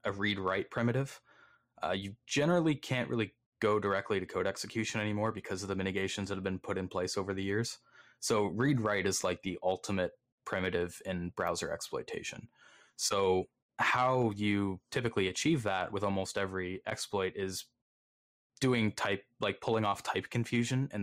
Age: 20-39